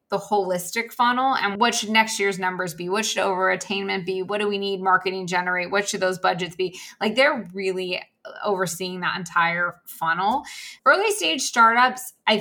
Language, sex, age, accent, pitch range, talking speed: English, female, 20-39, American, 180-205 Hz, 180 wpm